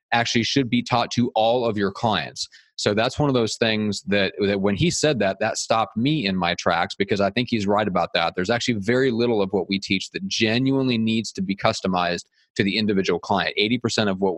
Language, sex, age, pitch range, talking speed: English, male, 30-49, 100-125 Hz, 230 wpm